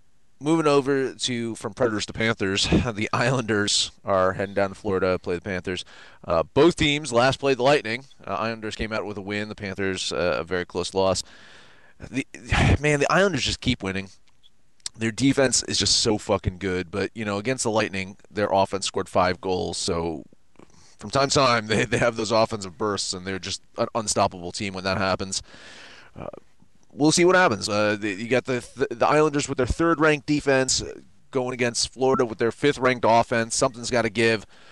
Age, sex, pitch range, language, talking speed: 30-49, male, 105-135 Hz, English, 195 wpm